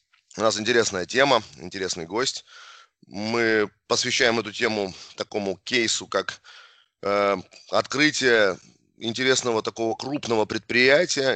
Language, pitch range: Russian, 105-130 Hz